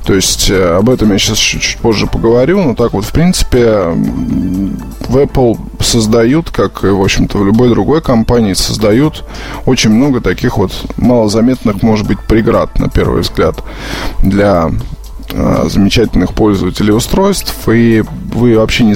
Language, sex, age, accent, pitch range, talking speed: Russian, male, 20-39, native, 100-115 Hz, 140 wpm